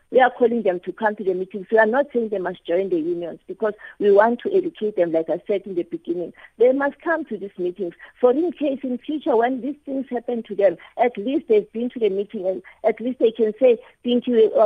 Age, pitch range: 50-69, 195-250 Hz